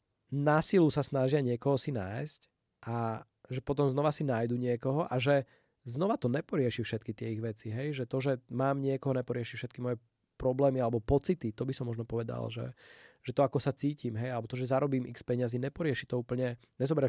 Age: 20-39